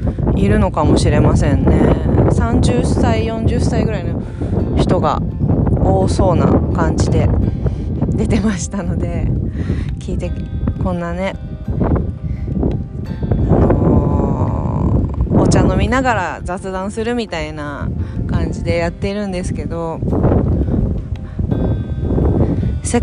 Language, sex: Japanese, female